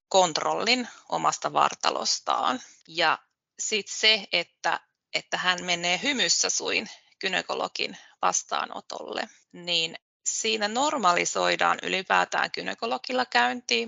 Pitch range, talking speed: 170-210 Hz, 85 wpm